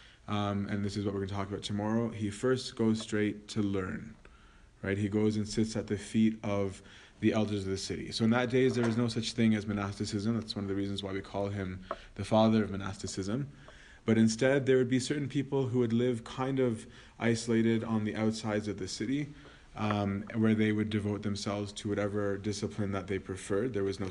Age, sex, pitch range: 20-39, male, 100-115 Hz